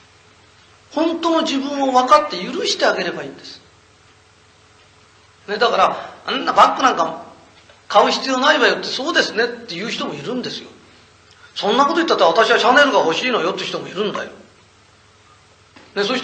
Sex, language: male, Japanese